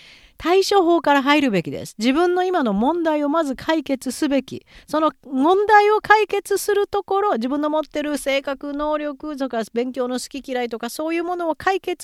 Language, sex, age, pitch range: Japanese, female, 40-59, 175-285 Hz